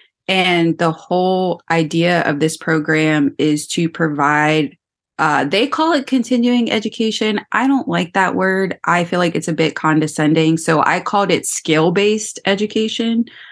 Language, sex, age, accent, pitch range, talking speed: English, female, 20-39, American, 150-185 Hz, 150 wpm